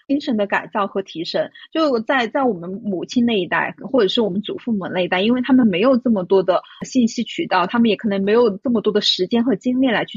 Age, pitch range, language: 30-49, 195-260 Hz, Chinese